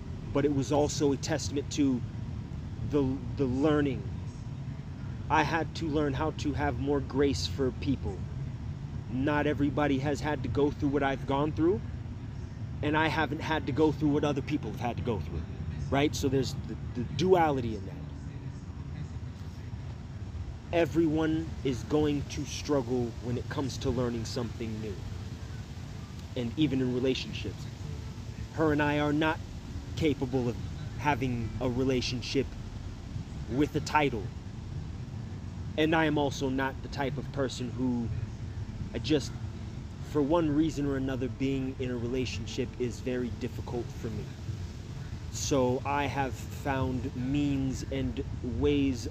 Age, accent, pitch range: 30-49, American, 110-140 Hz